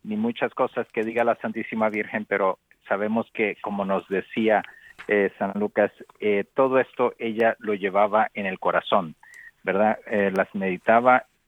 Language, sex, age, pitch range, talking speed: Spanish, male, 50-69, 105-130 Hz, 155 wpm